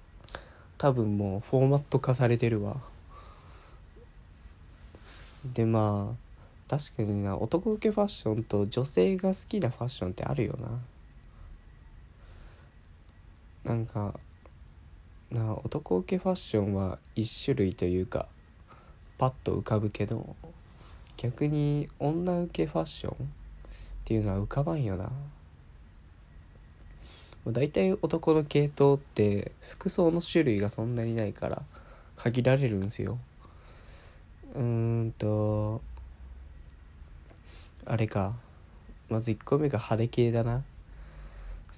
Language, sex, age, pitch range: Japanese, male, 20-39, 85-130 Hz